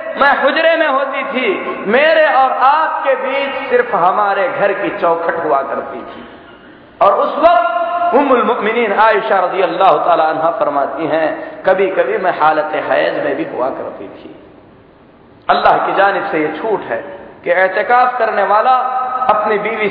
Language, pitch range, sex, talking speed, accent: Hindi, 210-285 Hz, male, 145 wpm, native